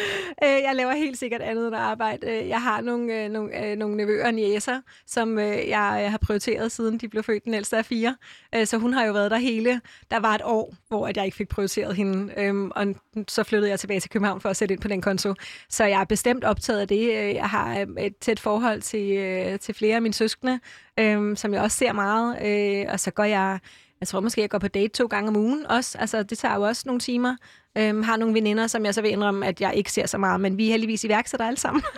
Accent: native